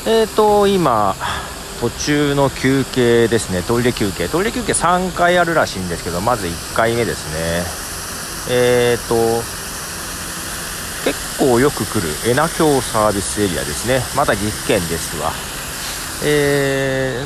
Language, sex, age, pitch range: Japanese, male, 40-59, 90-145 Hz